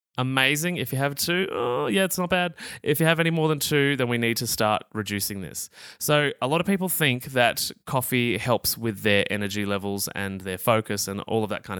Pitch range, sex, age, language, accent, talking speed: 110-145 Hz, male, 20-39, English, Australian, 230 wpm